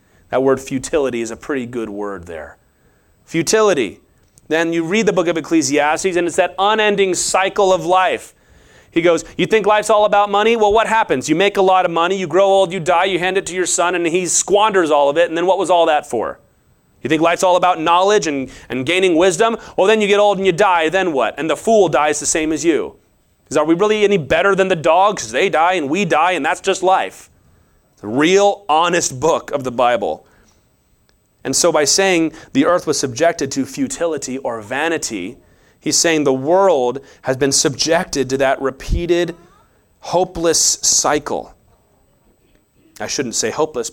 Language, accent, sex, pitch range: English, American, male, 140-205 Hz